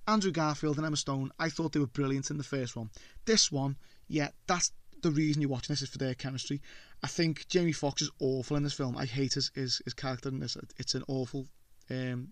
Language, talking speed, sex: English, 230 wpm, male